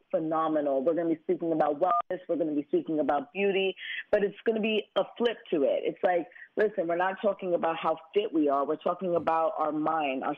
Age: 30-49